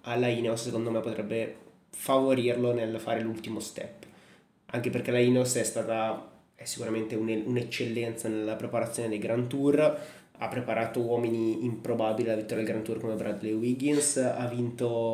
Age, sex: 20-39, male